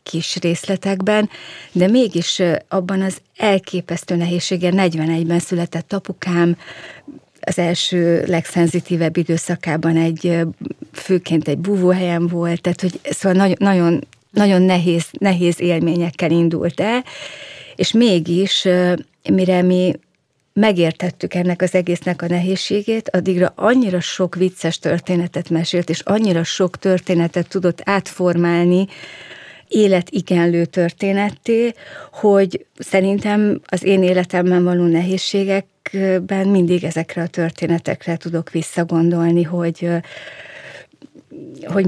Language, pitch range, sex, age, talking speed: Hungarian, 170-185 Hz, female, 30-49, 100 wpm